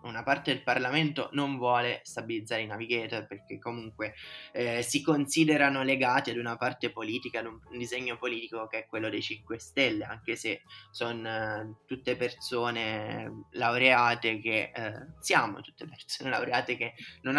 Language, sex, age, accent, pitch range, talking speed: Italian, male, 10-29, native, 115-145 Hz, 150 wpm